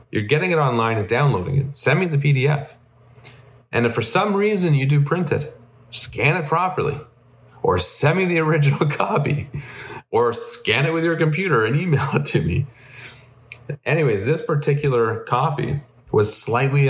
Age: 30-49